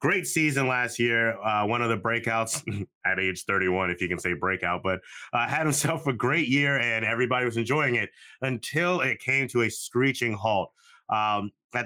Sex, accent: male, American